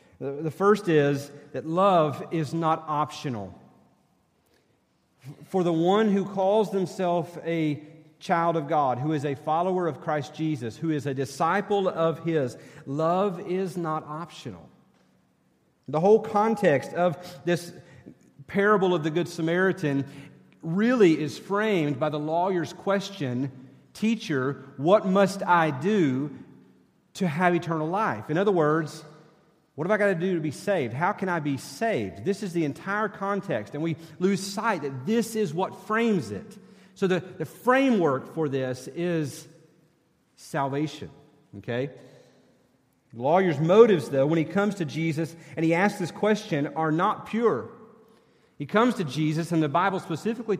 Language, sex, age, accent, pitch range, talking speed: English, male, 40-59, American, 150-195 Hz, 150 wpm